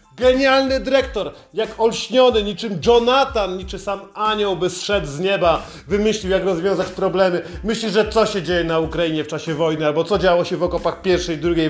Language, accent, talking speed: Polish, native, 185 wpm